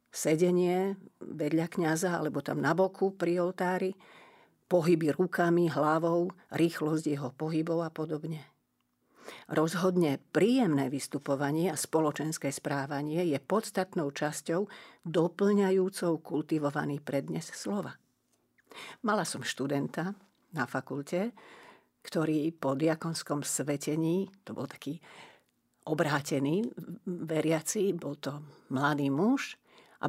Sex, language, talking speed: female, Slovak, 100 wpm